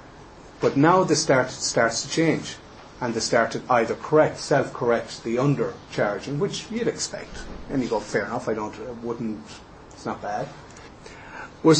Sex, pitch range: male, 110-150 Hz